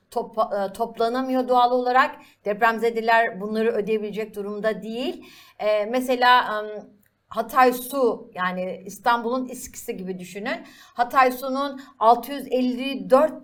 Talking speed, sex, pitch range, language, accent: 85 wpm, female, 210-260 Hz, Turkish, native